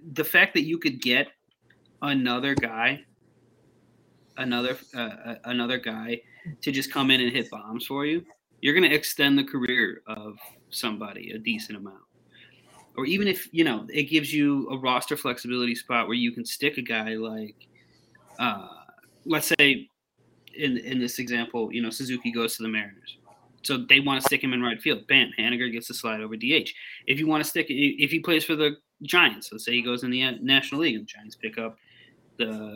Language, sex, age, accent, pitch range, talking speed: English, male, 20-39, American, 120-140 Hz, 195 wpm